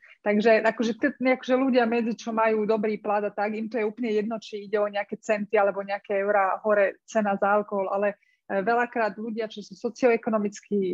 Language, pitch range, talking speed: Slovak, 205-230 Hz, 180 wpm